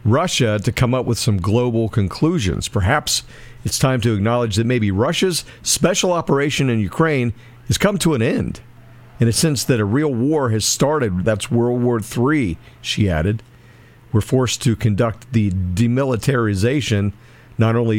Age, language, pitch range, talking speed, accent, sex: 50-69, English, 110-130 Hz, 160 wpm, American, male